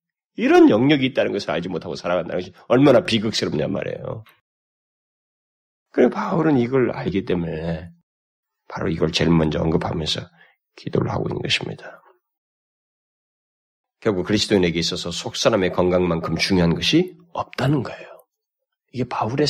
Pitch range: 105-155 Hz